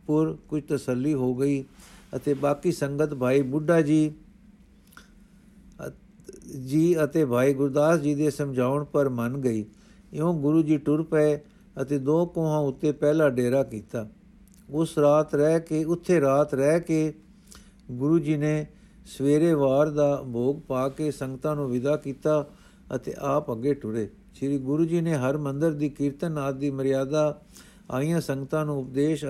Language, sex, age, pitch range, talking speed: Punjabi, male, 60-79, 135-160 Hz, 145 wpm